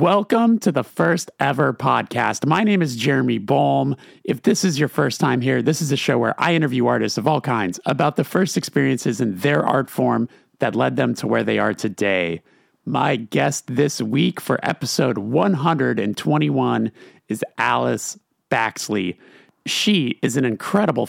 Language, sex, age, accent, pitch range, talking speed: English, male, 30-49, American, 120-160 Hz, 170 wpm